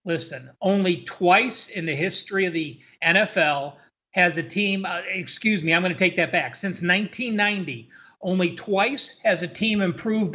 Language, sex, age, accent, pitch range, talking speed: English, male, 40-59, American, 180-230 Hz, 160 wpm